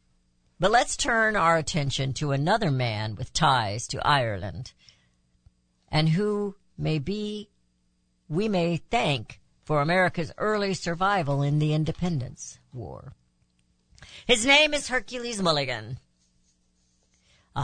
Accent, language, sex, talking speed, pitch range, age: American, English, female, 110 wpm, 135-210 Hz, 60-79